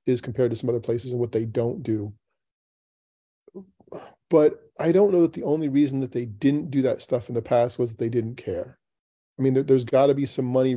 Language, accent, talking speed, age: English, American, 230 wpm, 40-59